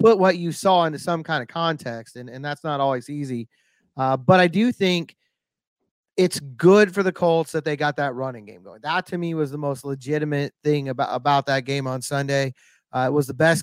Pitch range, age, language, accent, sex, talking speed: 145-180 Hz, 30-49, English, American, male, 225 wpm